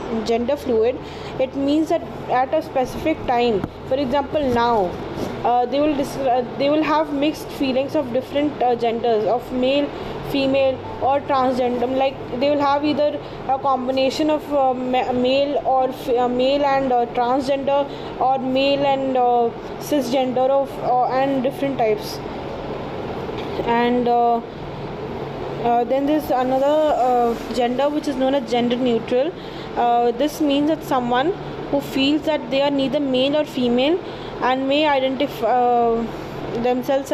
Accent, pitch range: Indian, 250-290 Hz